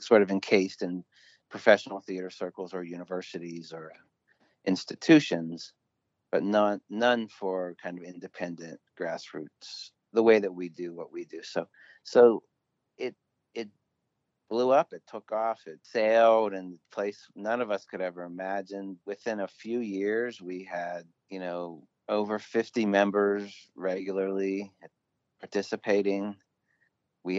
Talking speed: 135 wpm